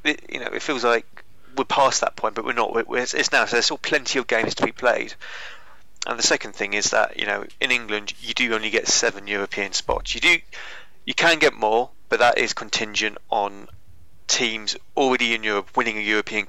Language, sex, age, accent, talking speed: English, male, 20-39, British, 215 wpm